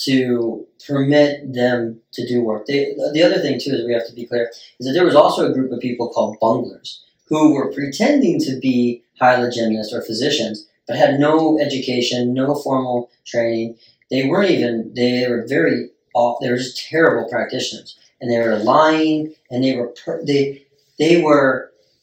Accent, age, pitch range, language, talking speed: American, 40-59, 115-135 Hz, English, 180 wpm